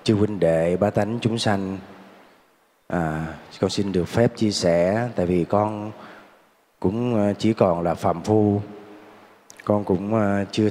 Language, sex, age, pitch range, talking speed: Vietnamese, male, 20-39, 90-110 Hz, 140 wpm